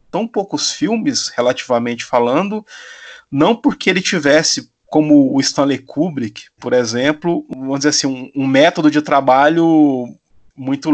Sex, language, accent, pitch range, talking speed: male, Portuguese, Brazilian, 140-205 Hz, 130 wpm